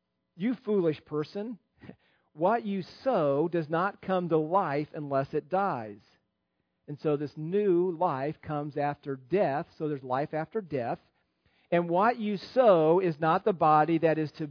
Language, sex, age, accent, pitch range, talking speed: English, male, 50-69, American, 155-200 Hz, 155 wpm